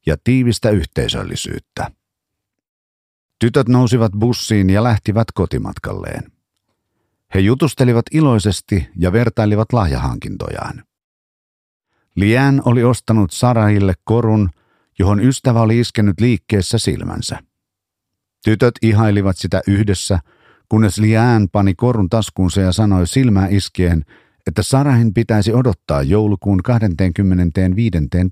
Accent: native